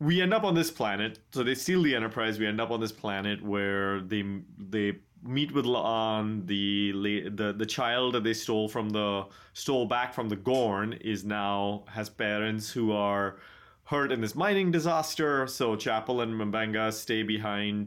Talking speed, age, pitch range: 180 wpm, 30-49, 100-120 Hz